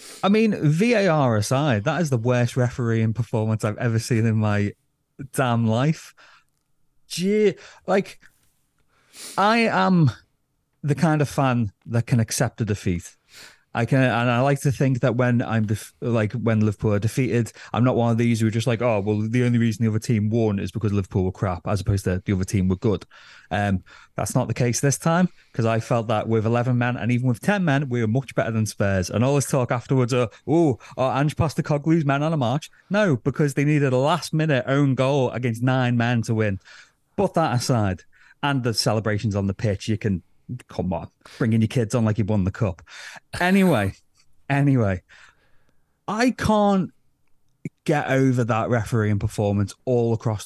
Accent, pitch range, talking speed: British, 110-145 Hz, 195 wpm